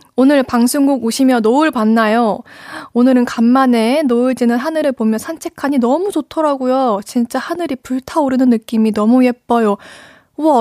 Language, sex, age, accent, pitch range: Korean, female, 20-39, native, 235-300 Hz